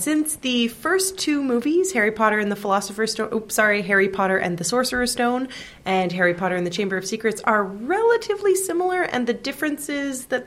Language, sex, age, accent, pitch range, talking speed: English, female, 20-39, American, 180-250 Hz, 195 wpm